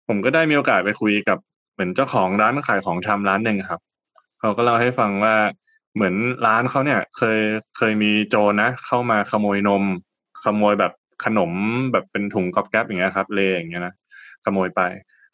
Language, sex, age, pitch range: Thai, male, 20-39, 95-110 Hz